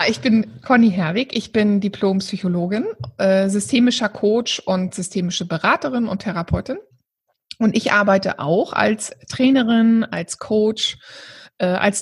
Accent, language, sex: German, German, female